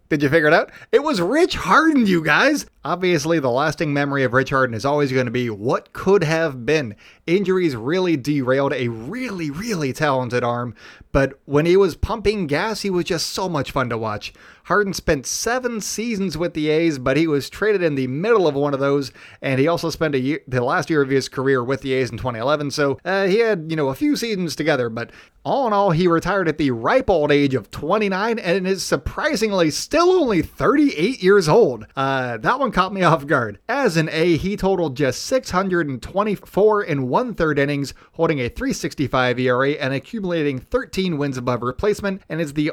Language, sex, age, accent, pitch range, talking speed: English, male, 30-49, American, 135-185 Hz, 205 wpm